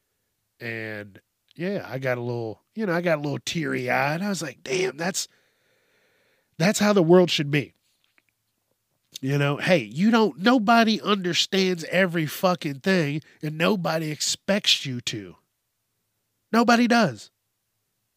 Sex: male